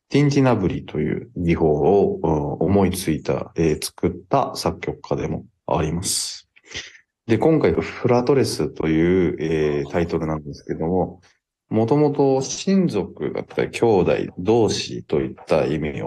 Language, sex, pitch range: Japanese, male, 80-110 Hz